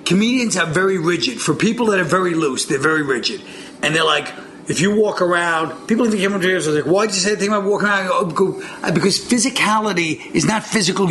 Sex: male